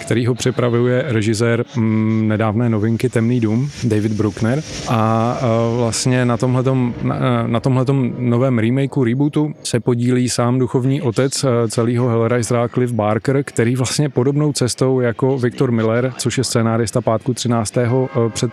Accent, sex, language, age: native, male, Czech, 30-49